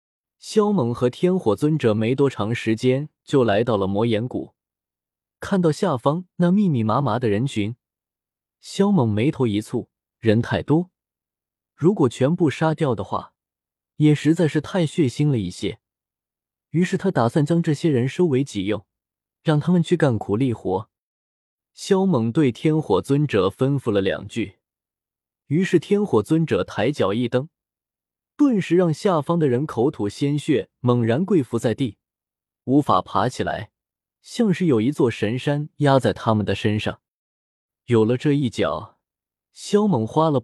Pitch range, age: 110-165 Hz, 20-39